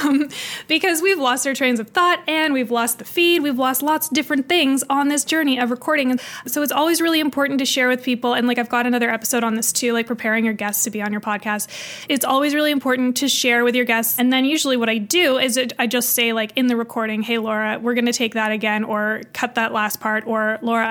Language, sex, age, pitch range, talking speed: English, female, 20-39, 225-260 Hz, 260 wpm